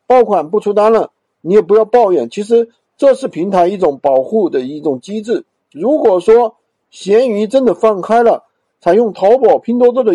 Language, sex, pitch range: Chinese, male, 185-255 Hz